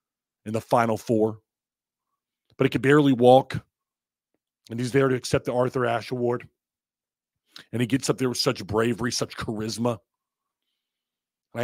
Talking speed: 150 wpm